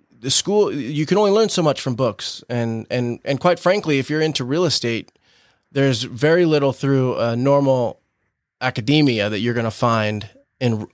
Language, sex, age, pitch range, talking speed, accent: English, male, 20-39, 115-145 Hz, 180 wpm, American